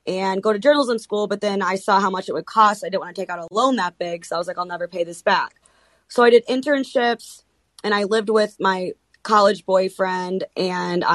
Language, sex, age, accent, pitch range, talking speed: English, female, 20-39, American, 190-235 Hz, 240 wpm